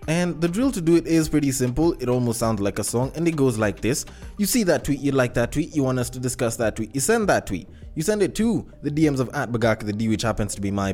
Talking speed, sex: 300 wpm, male